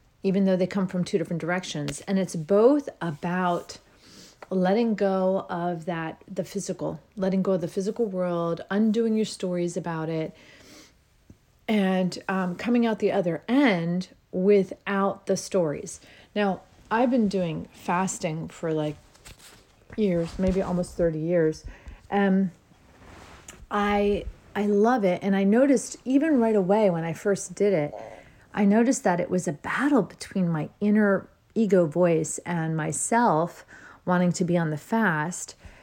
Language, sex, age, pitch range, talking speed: English, female, 40-59, 175-210 Hz, 145 wpm